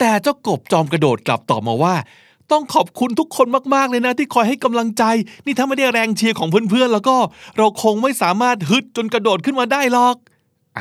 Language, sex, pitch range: Thai, male, 150-225 Hz